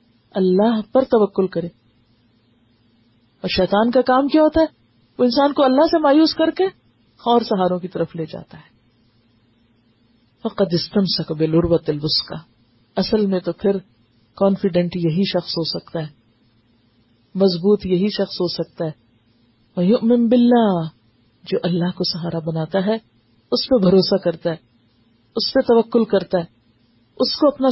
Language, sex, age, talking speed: Urdu, female, 40-59, 145 wpm